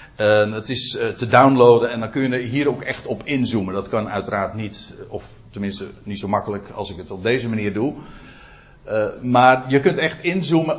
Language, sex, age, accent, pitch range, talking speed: Dutch, male, 60-79, Dutch, 105-145 Hz, 205 wpm